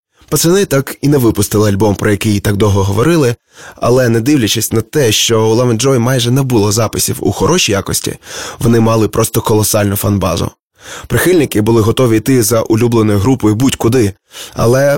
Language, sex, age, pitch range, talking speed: Ukrainian, male, 20-39, 105-130 Hz, 160 wpm